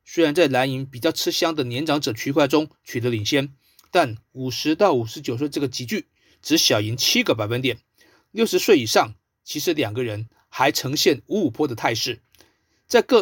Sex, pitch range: male, 120-165 Hz